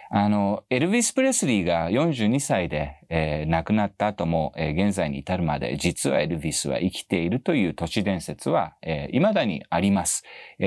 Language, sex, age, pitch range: Japanese, male, 40-59, 80-135 Hz